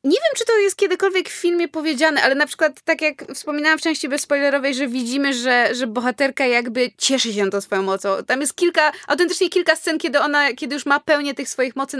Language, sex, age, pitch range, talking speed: Polish, female, 20-39, 240-300 Hz, 225 wpm